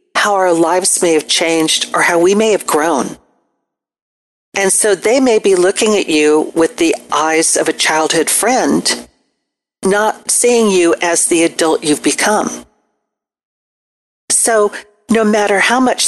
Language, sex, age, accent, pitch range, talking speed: English, female, 50-69, American, 170-235 Hz, 150 wpm